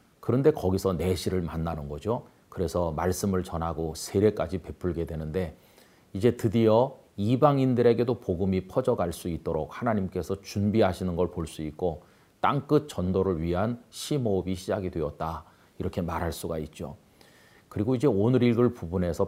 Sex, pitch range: male, 85-110 Hz